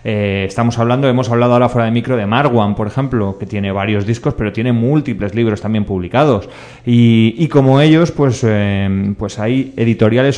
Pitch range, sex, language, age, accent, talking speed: 110-130 Hz, male, Spanish, 30-49, Spanish, 180 wpm